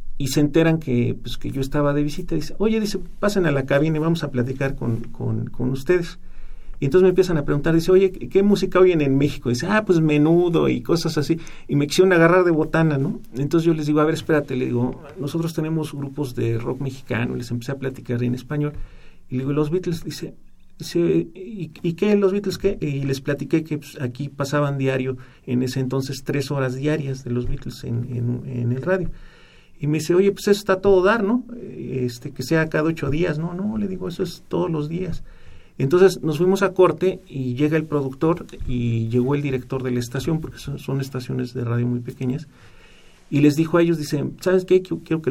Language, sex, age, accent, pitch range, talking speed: Spanish, male, 40-59, Mexican, 130-165 Hz, 225 wpm